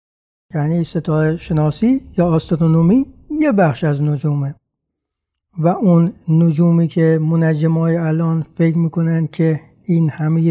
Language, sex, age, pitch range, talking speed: Persian, male, 60-79, 155-200 Hz, 115 wpm